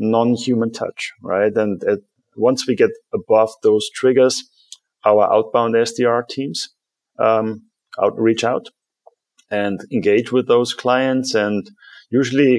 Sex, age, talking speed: male, 30-49, 115 wpm